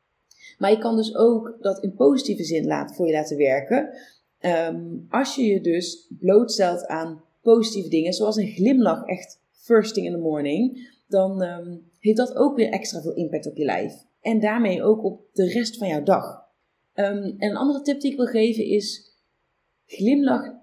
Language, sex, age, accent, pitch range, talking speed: Dutch, female, 30-49, Dutch, 180-240 Hz, 185 wpm